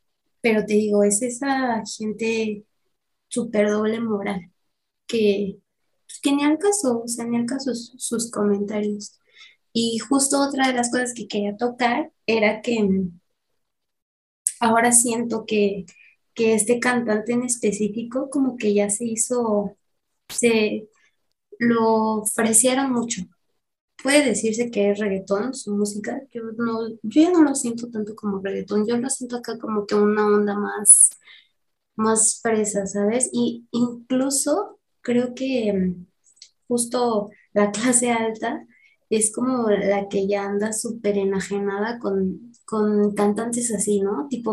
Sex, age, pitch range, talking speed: female, 20-39, 205-240 Hz, 130 wpm